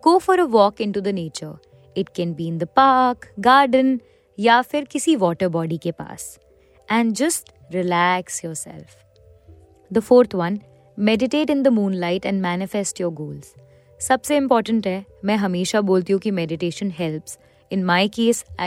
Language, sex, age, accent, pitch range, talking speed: Hindi, female, 20-39, native, 175-235 Hz, 160 wpm